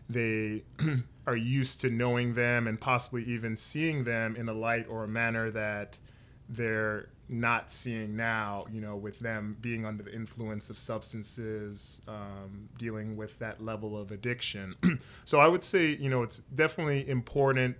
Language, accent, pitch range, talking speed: English, American, 110-125 Hz, 160 wpm